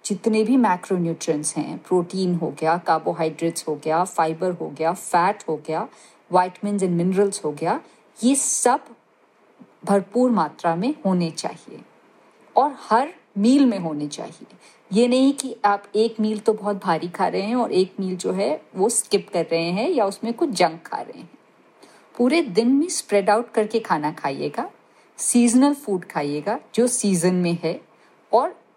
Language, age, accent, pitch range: Hindi, 50-69, native, 170-230 Hz